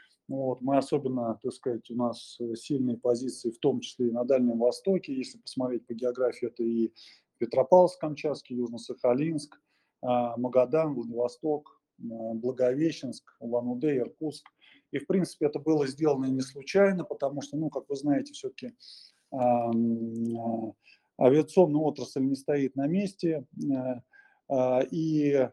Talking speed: 120 wpm